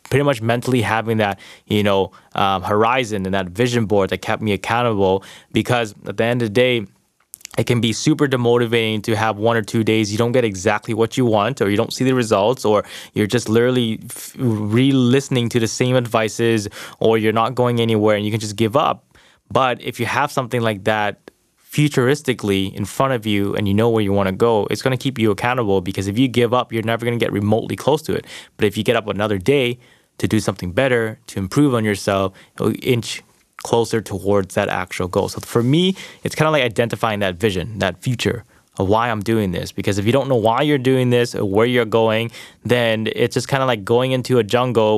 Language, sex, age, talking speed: English, male, 20-39, 225 wpm